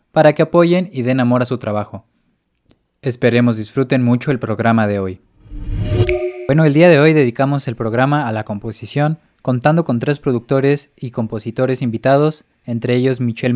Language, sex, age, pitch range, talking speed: Spanish, male, 20-39, 115-140 Hz, 165 wpm